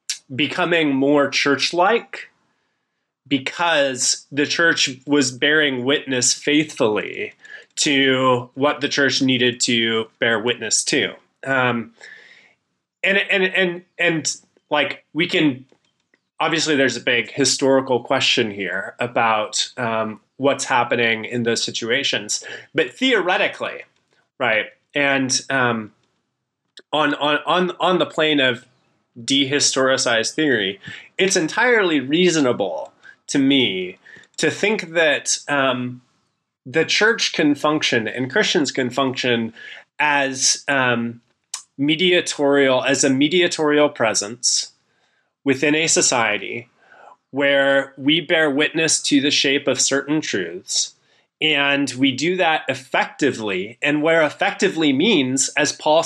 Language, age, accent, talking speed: English, 30-49, American, 110 wpm